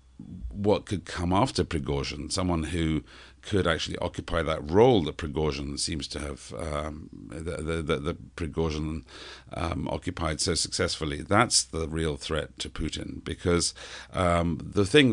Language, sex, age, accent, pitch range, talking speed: English, male, 50-69, British, 75-85 Hz, 145 wpm